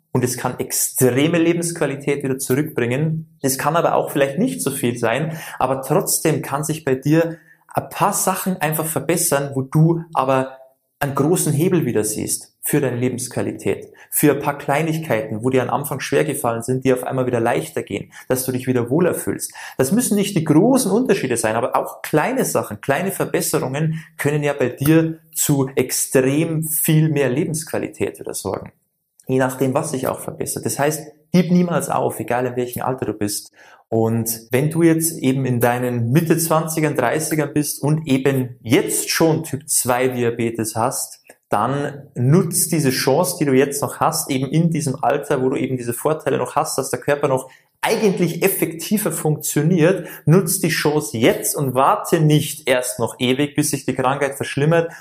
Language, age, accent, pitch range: German, 20-39, German, 130-160 Hz